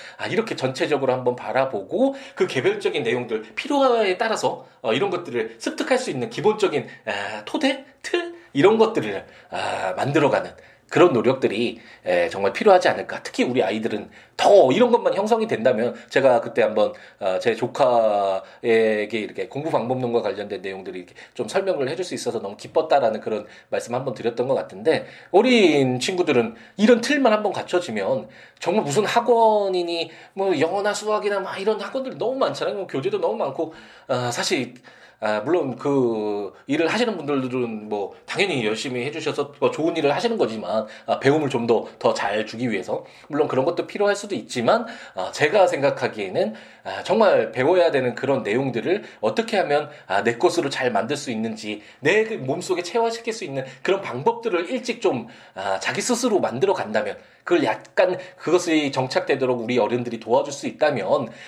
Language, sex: Korean, male